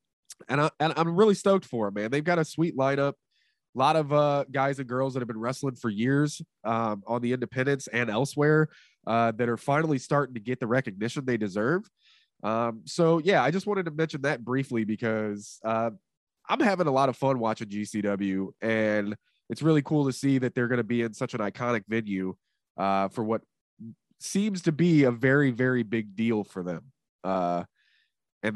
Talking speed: 200 wpm